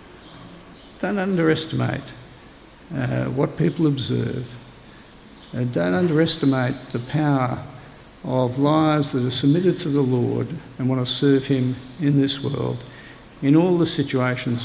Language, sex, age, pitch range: English, male, 60-79, 125-140 Hz